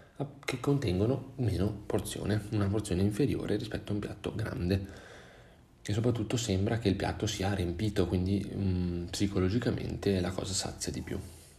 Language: Italian